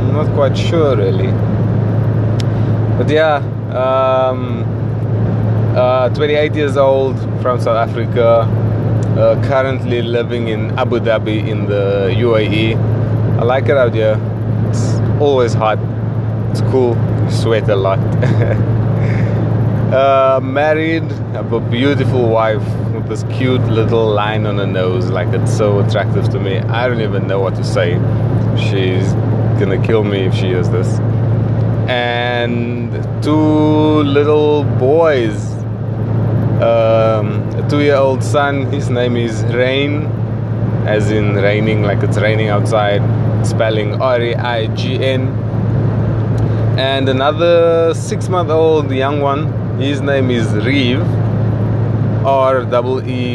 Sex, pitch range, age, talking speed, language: male, 110-125 Hz, 20-39, 115 wpm, English